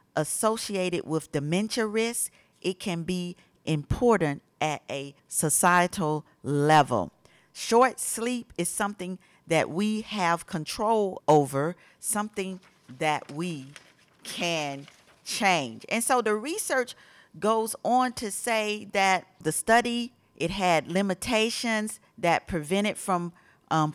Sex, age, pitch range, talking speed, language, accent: female, 40-59, 155-210 Hz, 110 wpm, English, American